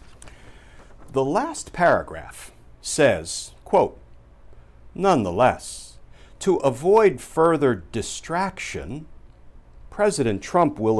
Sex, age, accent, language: male, 60-79, American, English